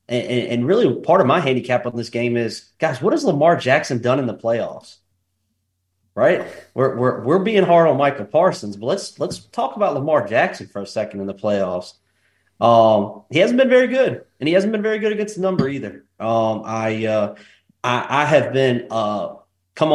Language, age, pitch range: English, 30-49, 120-140 Hz